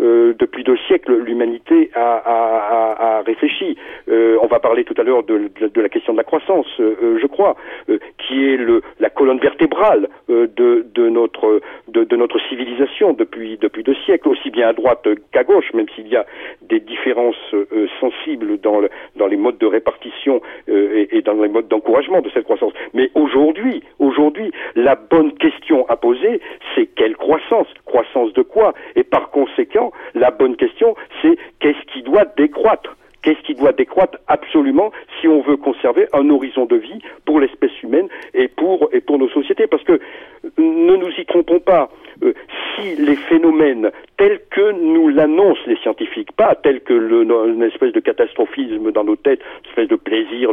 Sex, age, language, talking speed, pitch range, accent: male, 50-69, French, 185 wpm, 275-390 Hz, French